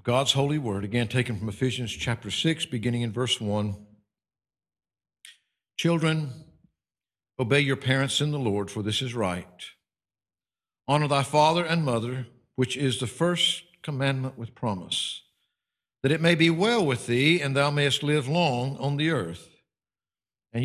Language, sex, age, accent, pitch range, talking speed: English, male, 60-79, American, 105-140 Hz, 150 wpm